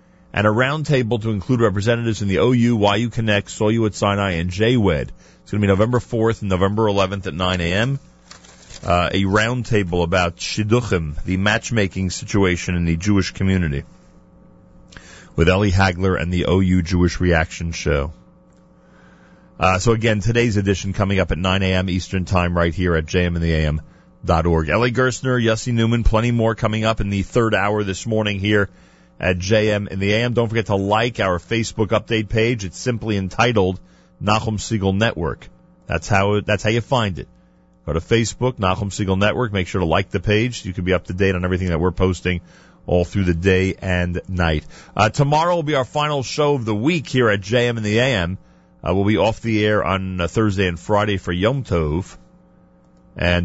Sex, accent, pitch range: male, American, 90-115 Hz